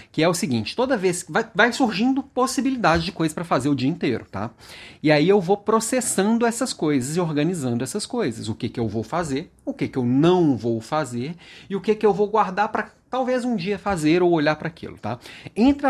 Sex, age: male, 30-49